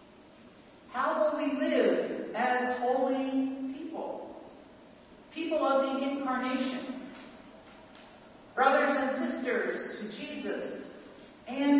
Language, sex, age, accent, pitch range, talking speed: English, female, 50-69, American, 220-275 Hz, 85 wpm